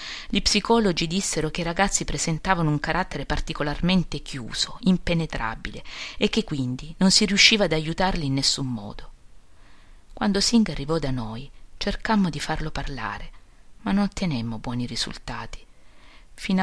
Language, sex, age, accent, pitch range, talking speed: Italian, female, 40-59, native, 140-190 Hz, 135 wpm